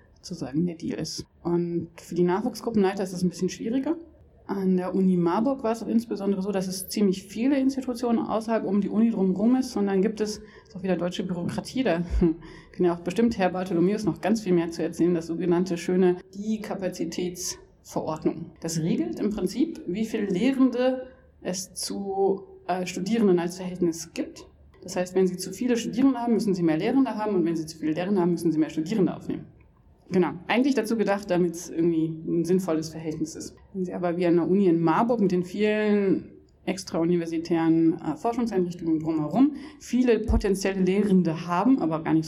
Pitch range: 170-210 Hz